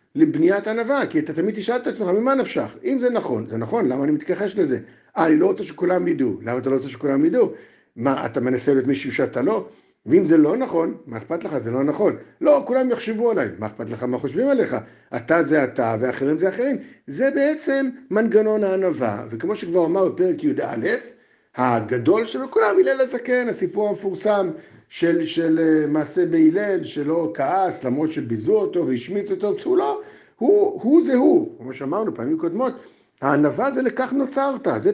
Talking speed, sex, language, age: 185 wpm, male, Hebrew, 50-69